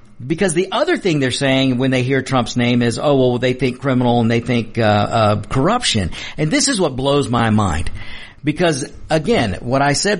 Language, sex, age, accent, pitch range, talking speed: English, male, 50-69, American, 120-170 Hz, 205 wpm